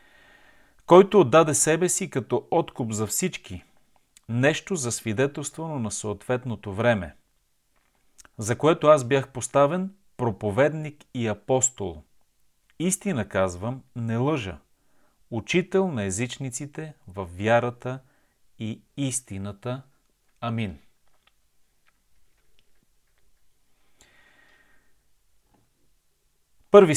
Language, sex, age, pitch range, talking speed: Bulgarian, male, 40-59, 105-140 Hz, 80 wpm